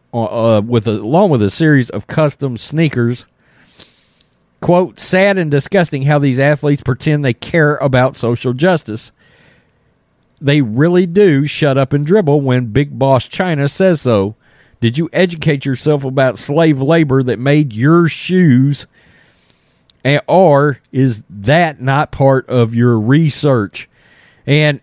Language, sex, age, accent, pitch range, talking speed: English, male, 40-59, American, 105-145 Hz, 135 wpm